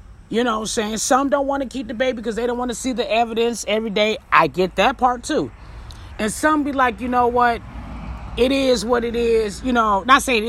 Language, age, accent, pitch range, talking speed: English, 30-49, American, 210-280 Hz, 250 wpm